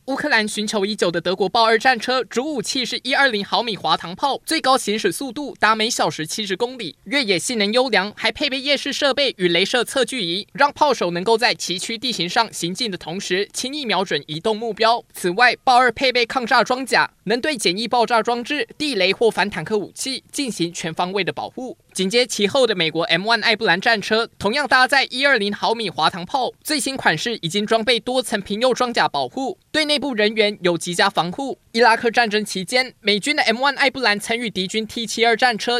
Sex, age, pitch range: male, 20-39, 195-255 Hz